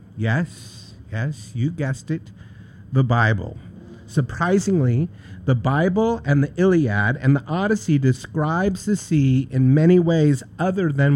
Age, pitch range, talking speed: 50-69, 110-165 Hz, 130 wpm